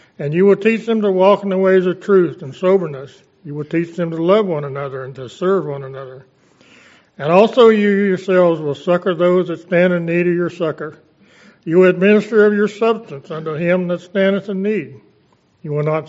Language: English